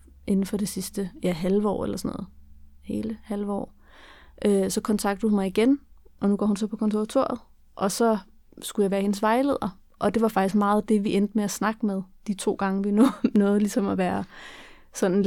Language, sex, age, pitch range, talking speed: Danish, female, 30-49, 190-215 Hz, 205 wpm